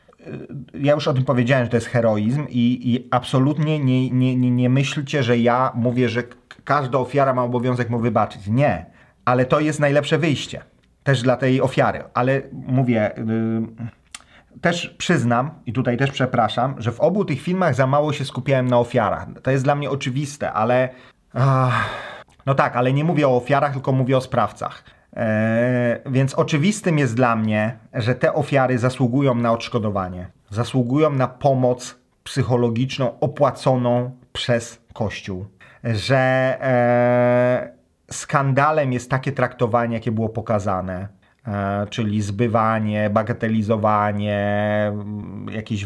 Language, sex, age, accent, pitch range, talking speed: Polish, male, 30-49, native, 115-135 Hz, 135 wpm